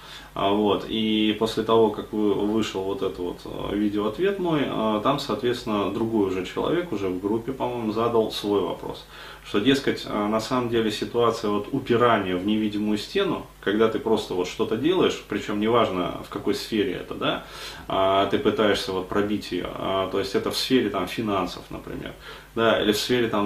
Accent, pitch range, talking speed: native, 100-115 Hz, 165 wpm